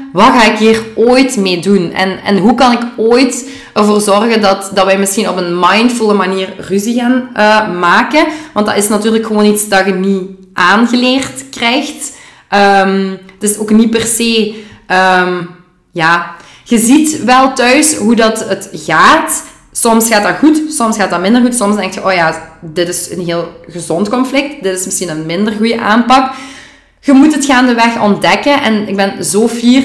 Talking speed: 175 wpm